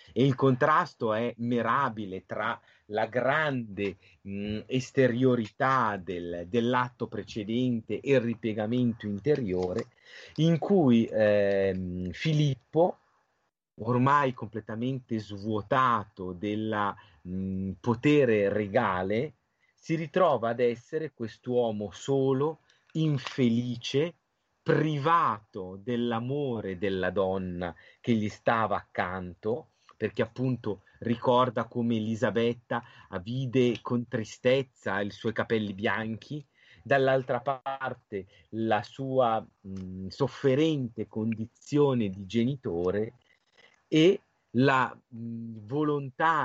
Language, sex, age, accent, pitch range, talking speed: Italian, male, 30-49, native, 105-130 Hz, 80 wpm